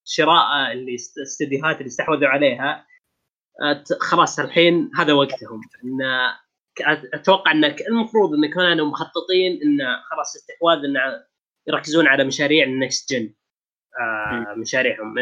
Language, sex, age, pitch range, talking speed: Arabic, female, 20-39, 130-175 Hz, 105 wpm